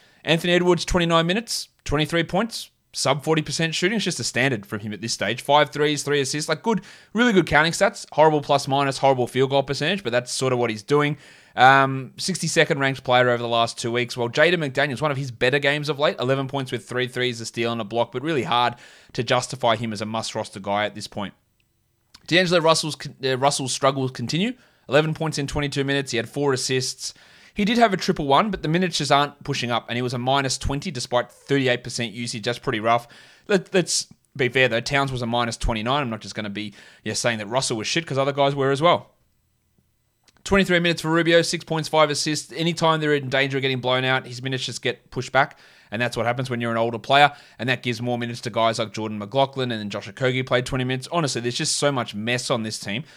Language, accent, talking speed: English, Australian, 230 wpm